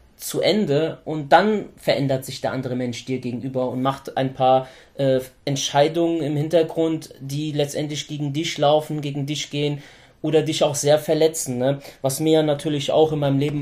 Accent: German